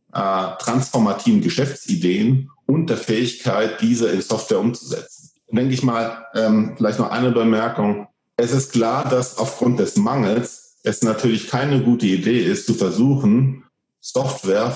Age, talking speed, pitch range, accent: 50-69, 140 wpm, 105-130 Hz, German